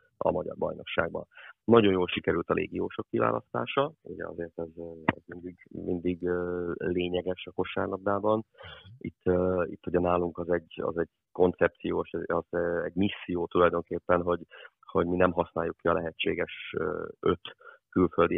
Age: 30-49